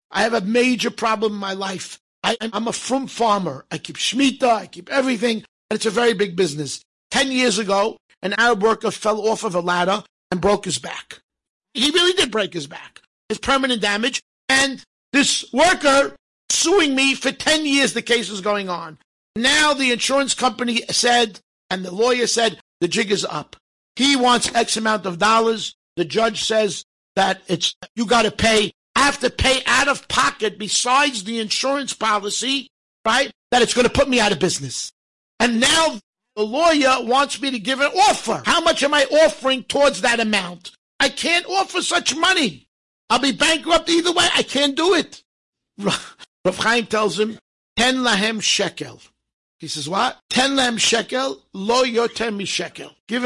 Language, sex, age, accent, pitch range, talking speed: English, male, 50-69, American, 200-270 Hz, 180 wpm